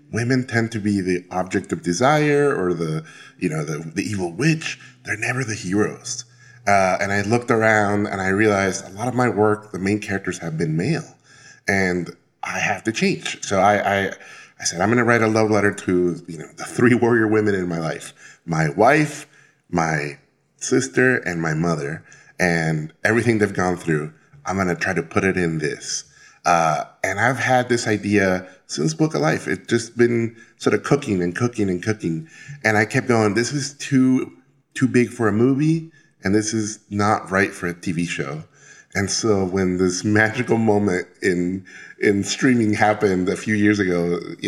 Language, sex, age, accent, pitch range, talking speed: English, male, 20-39, American, 90-120 Hz, 195 wpm